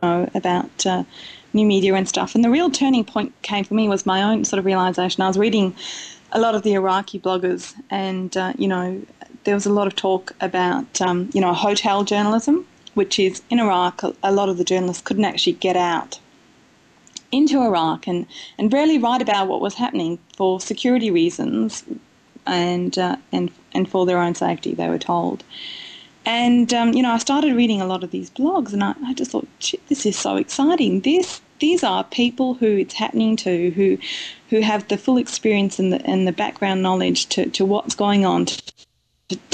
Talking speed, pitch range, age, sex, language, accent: 200 wpm, 190-250 Hz, 20-39, female, English, Australian